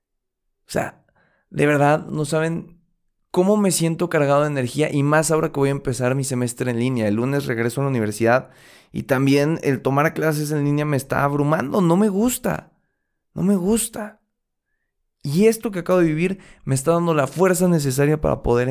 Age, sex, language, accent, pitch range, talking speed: 20-39, male, Spanish, Mexican, 125-165 Hz, 190 wpm